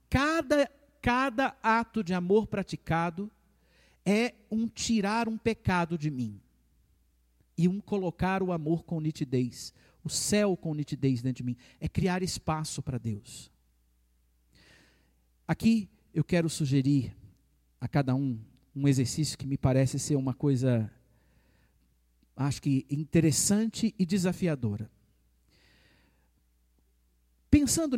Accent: Brazilian